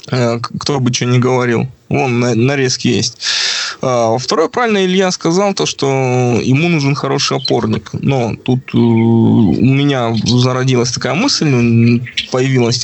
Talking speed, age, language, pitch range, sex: 120 wpm, 20-39, Russian, 115-135 Hz, male